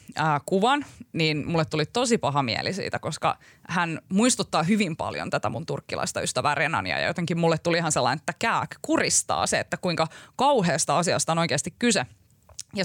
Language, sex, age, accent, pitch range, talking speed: Finnish, female, 20-39, native, 150-200 Hz, 175 wpm